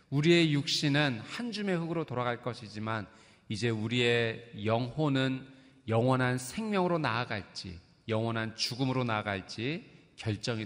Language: Korean